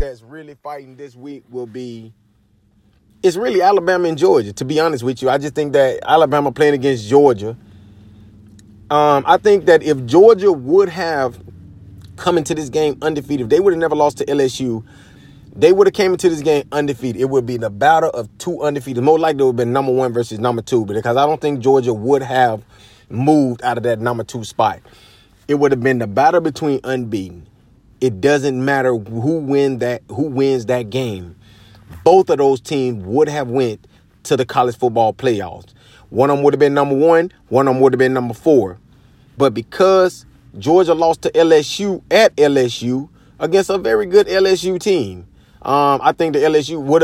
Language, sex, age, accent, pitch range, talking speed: English, male, 30-49, American, 115-160 Hz, 190 wpm